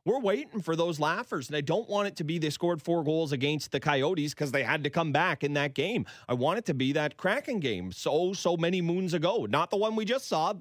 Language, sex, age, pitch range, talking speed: English, male, 30-49, 135-190 Hz, 265 wpm